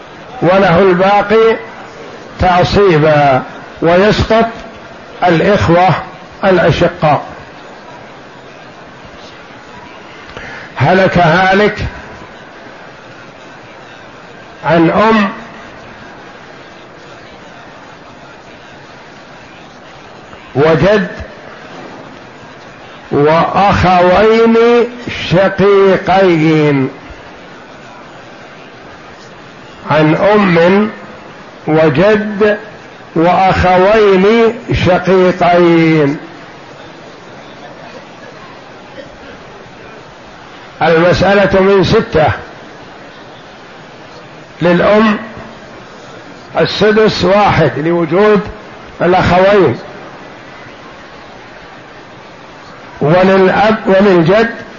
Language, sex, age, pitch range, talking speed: Arabic, male, 60-79, 165-210 Hz, 30 wpm